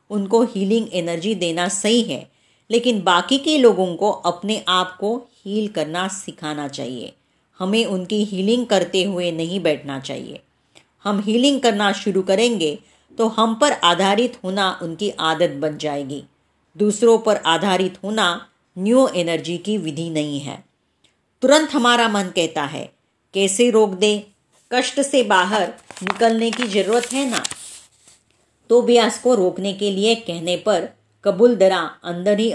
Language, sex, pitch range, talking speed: Marathi, female, 175-230 Hz, 145 wpm